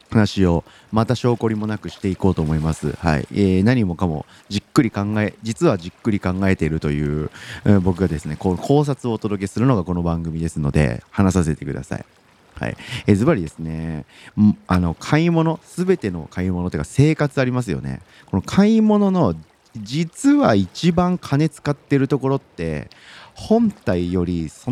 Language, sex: Japanese, male